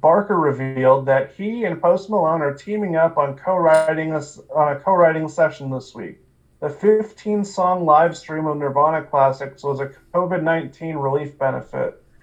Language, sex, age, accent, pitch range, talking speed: English, male, 30-49, American, 145-175 Hz, 145 wpm